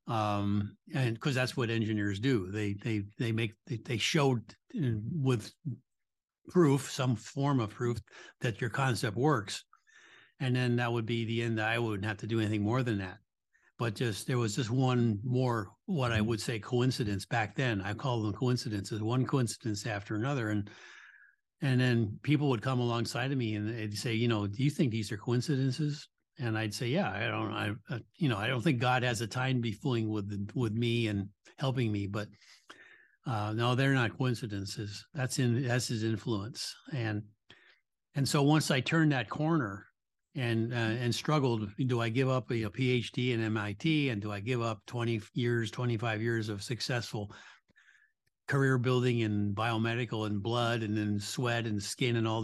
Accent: American